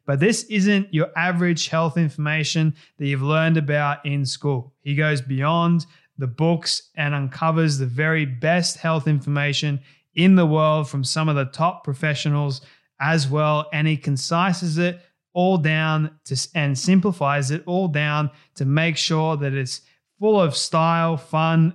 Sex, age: male, 20-39